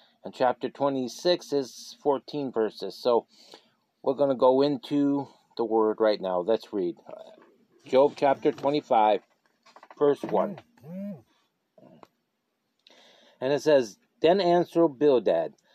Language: English